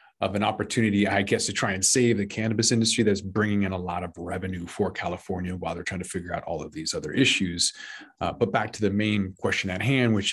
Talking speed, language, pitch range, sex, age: 245 wpm, English, 90-110 Hz, male, 30-49